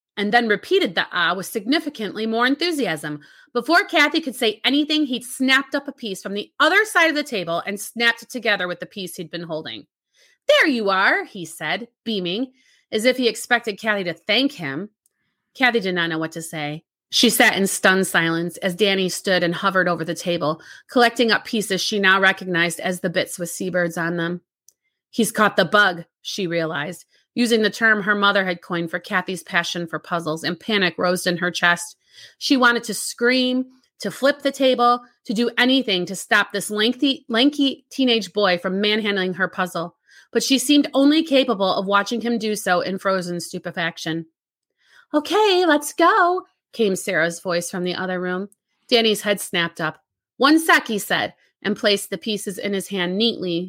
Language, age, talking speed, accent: English, 30-49, 185 wpm, American